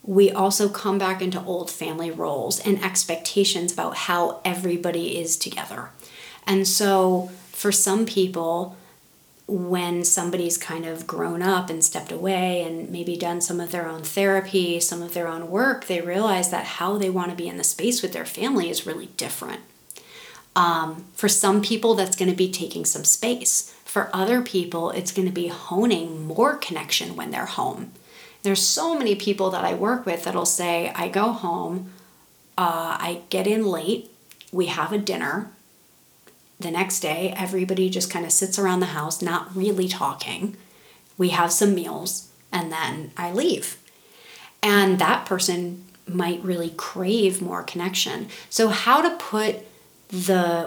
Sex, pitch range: female, 175-195 Hz